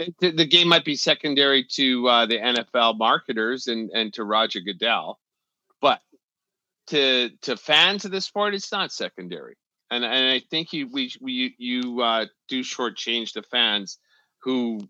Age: 40-59